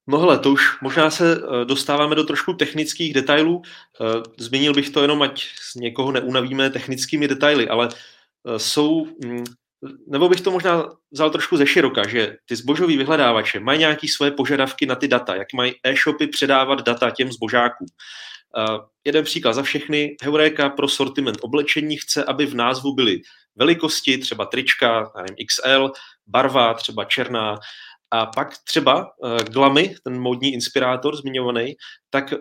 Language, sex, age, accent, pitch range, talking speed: Czech, male, 30-49, native, 125-150 Hz, 145 wpm